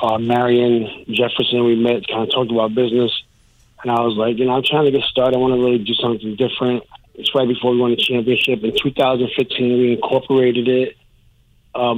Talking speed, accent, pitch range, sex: 205 wpm, American, 120-130 Hz, male